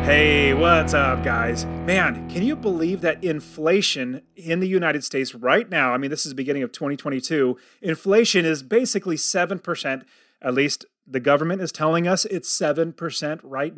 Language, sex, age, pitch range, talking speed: English, male, 30-49, 145-200 Hz, 165 wpm